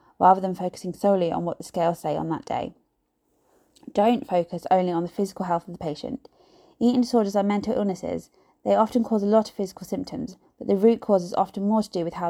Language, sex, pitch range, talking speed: English, female, 175-220 Hz, 225 wpm